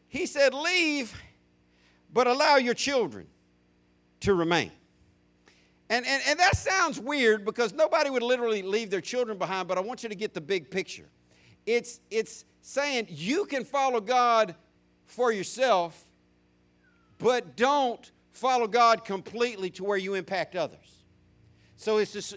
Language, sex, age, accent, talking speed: English, male, 50-69, American, 140 wpm